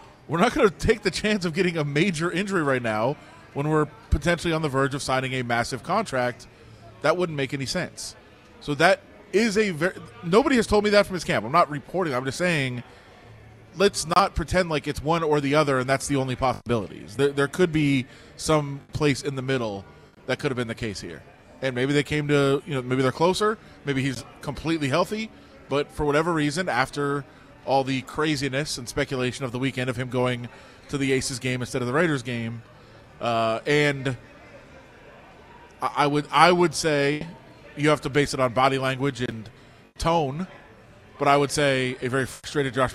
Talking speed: 200 wpm